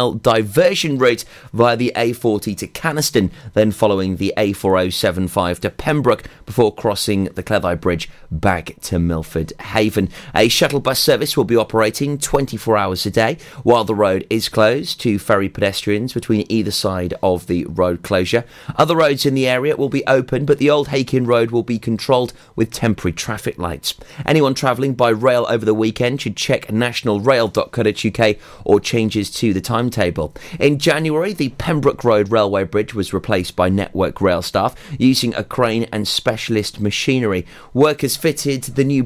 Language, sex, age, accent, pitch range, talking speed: English, male, 30-49, British, 105-130 Hz, 165 wpm